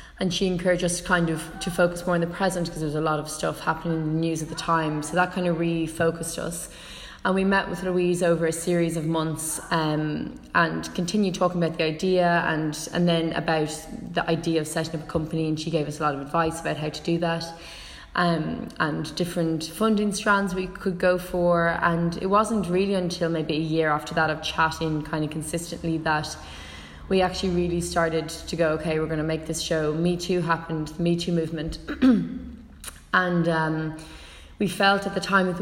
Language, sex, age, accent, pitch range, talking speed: English, female, 20-39, Irish, 160-180 Hz, 215 wpm